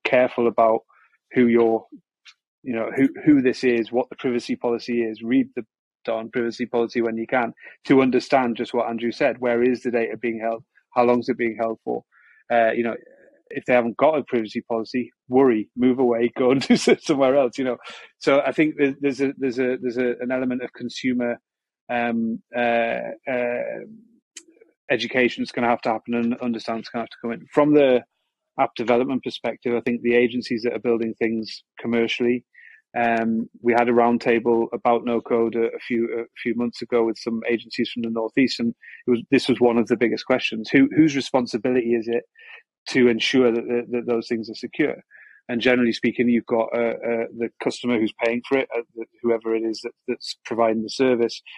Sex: male